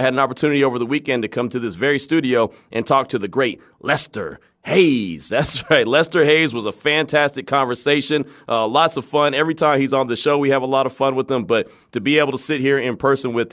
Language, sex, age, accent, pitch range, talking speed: English, male, 30-49, American, 115-145 Hz, 250 wpm